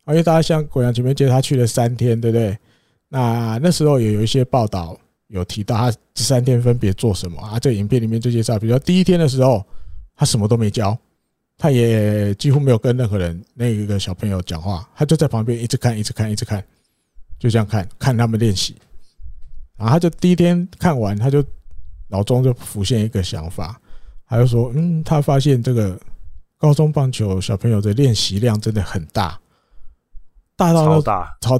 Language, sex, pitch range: Chinese, male, 105-140 Hz